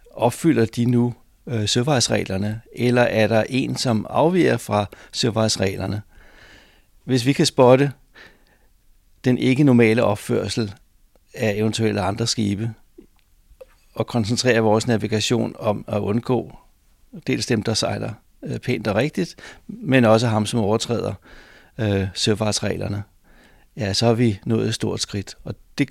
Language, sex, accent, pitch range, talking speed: Danish, male, native, 105-125 Hz, 130 wpm